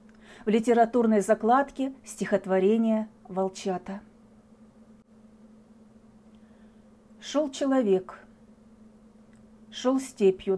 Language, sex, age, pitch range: Russian, female, 40-59, 220-240 Hz